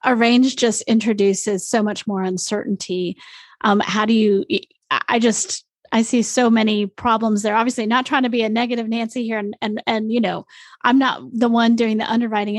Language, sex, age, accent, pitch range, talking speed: English, female, 30-49, American, 205-230 Hz, 195 wpm